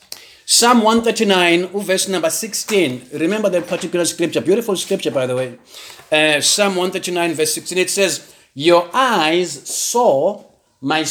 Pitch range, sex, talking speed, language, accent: 165-215 Hz, male, 135 wpm, English, South African